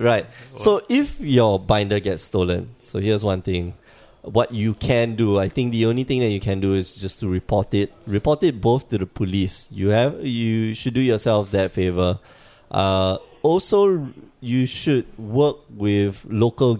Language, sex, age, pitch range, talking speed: English, male, 20-39, 95-125 Hz, 180 wpm